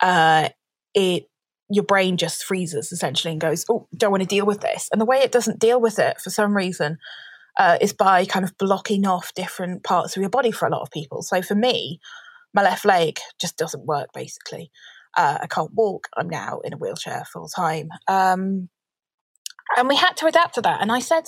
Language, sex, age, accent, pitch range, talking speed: English, female, 20-39, British, 175-230 Hz, 210 wpm